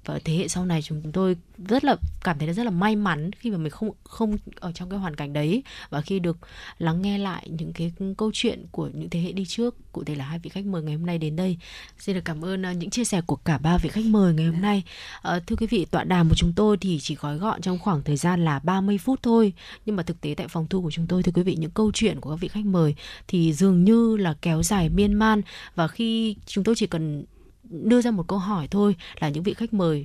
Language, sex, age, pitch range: Vietnamese, female, 20-39, 165-210 Hz